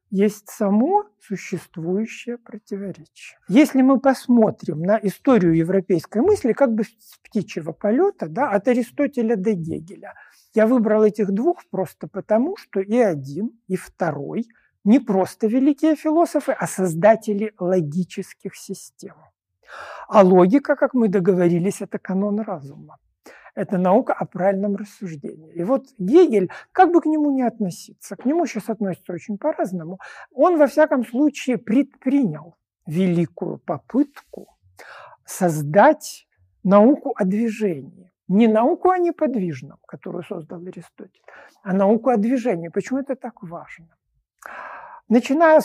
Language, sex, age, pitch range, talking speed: Ukrainian, male, 60-79, 185-260 Hz, 125 wpm